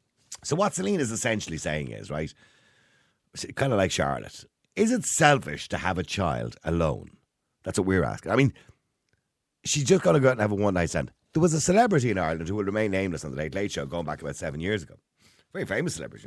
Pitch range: 75-115 Hz